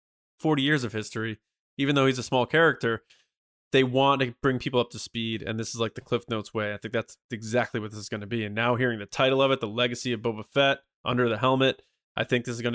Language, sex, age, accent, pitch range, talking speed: English, male, 20-39, American, 110-135 Hz, 265 wpm